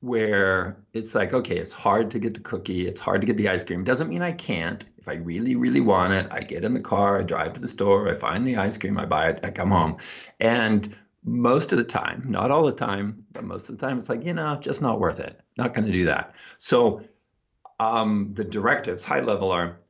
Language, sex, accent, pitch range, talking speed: English, male, American, 95-120 Hz, 245 wpm